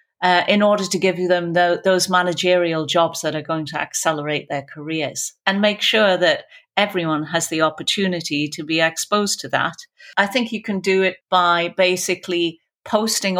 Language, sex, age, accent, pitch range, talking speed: English, female, 50-69, British, 170-210 Hz, 175 wpm